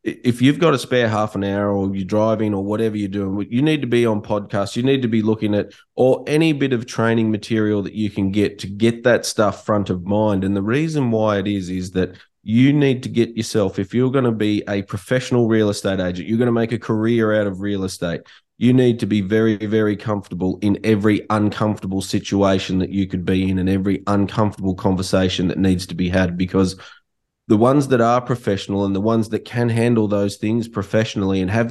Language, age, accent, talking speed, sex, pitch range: English, 20-39, Australian, 225 wpm, male, 95-115 Hz